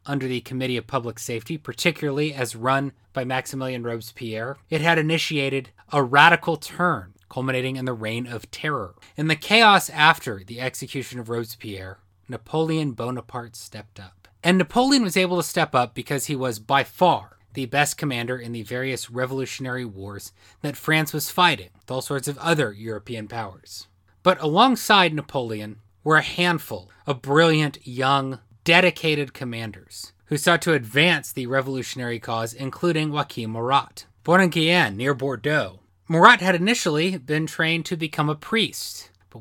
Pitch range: 115-155 Hz